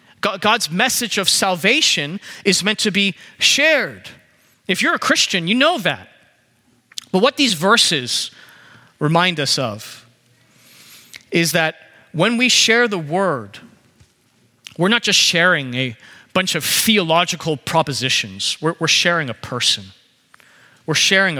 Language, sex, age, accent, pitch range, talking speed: English, male, 30-49, American, 135-200 Hz, 130 wpm